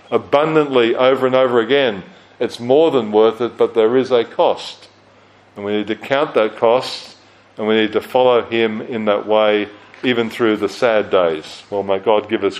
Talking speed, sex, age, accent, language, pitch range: 195 wpm, male, 40-59, Australian, English, 110-130 Hz